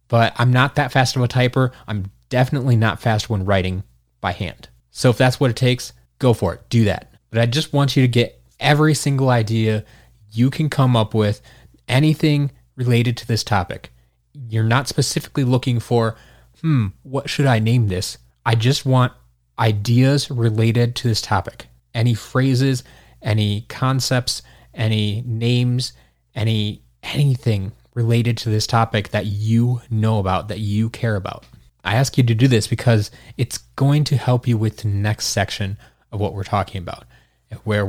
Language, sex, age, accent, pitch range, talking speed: English, male, 20-39, American, 105-130 Hz, 170 wpm